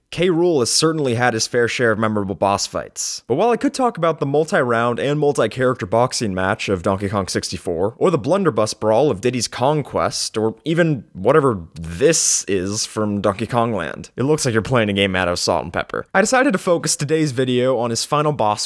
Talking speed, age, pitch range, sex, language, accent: 210 wpm, 20-39, 110-160 Hz, male, English, American